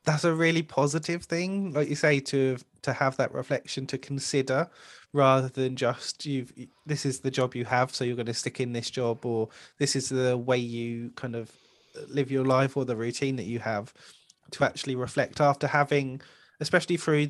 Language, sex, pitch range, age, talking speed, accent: English, male, 125-145 Hz, 20-39, 200 wpm, British